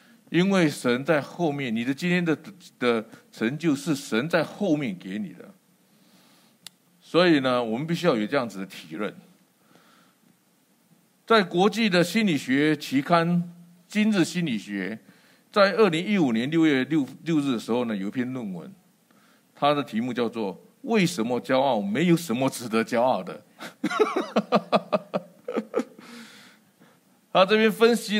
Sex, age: male, 50-69